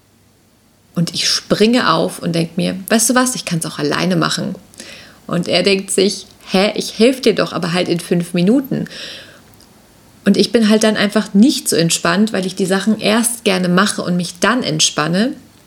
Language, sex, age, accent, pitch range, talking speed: German, female, 30-49, German, 175-220 Hz, 190 wpm